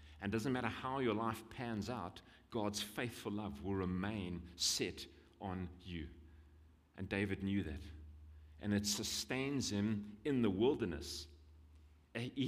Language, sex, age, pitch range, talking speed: English, male, 40-59, 85-115 Hz, 140 wpm